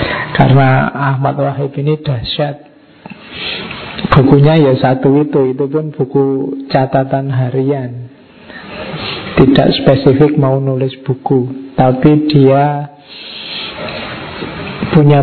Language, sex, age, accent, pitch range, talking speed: Indonesian, male, 50-69, native, 130-145 Hz, 85 wpm